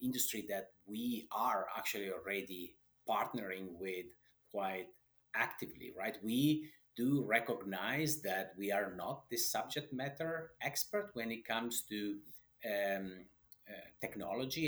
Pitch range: 95-125 Hz